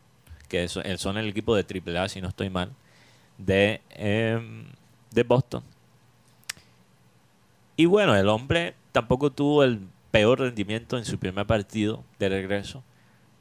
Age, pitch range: 30-49, 95-125 Hz